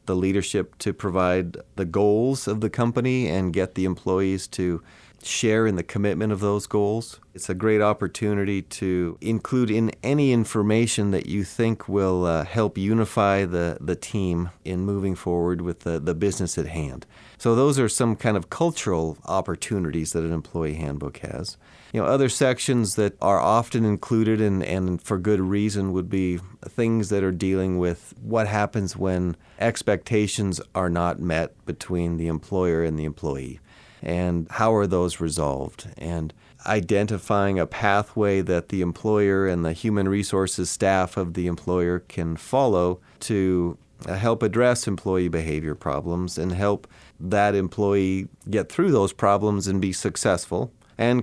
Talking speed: 160 wpm